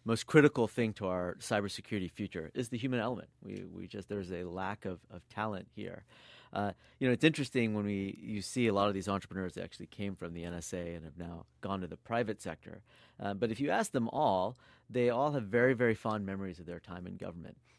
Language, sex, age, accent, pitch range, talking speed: English, male, 40-59, American, 95-120 Hz, 230 wpm